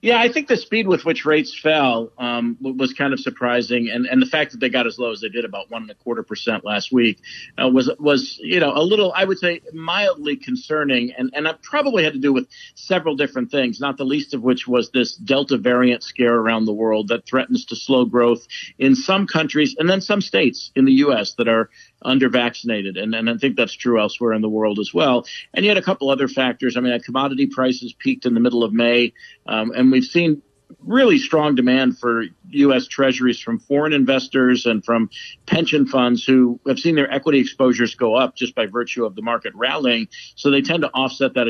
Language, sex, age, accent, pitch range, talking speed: English, male, 50-69, American, 120-150 Hz, 225 wpm